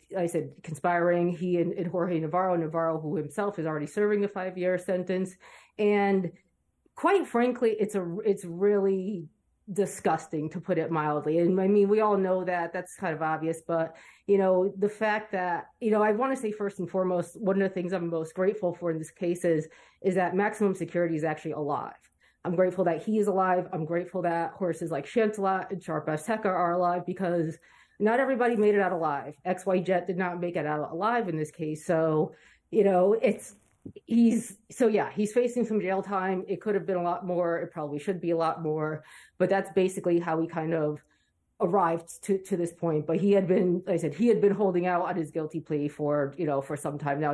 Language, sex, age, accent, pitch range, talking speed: English, female, 30-49, American, 165-195 Hz, 215 wpm